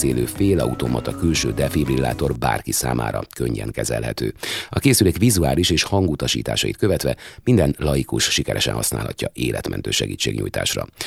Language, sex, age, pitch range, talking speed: Hungarian, male, 30-49, 65-85 Hz, 105 wpm